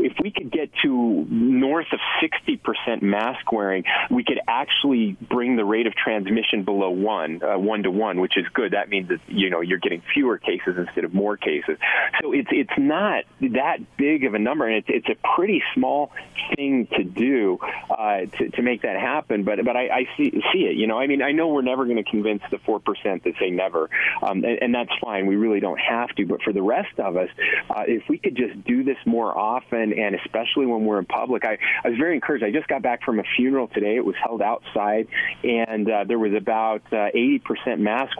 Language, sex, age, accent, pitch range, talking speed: English, male, 30-49, American, 105-160 Hz, 225 wpm